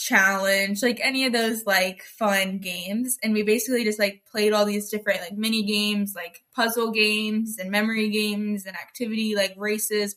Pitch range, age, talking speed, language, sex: 200-230 Hz, 10-29, 175 wpm, English, female